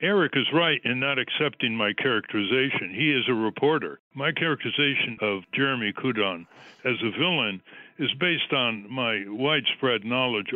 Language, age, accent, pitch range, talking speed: English, 60-79, American, 110-140 Hz, 150 wpm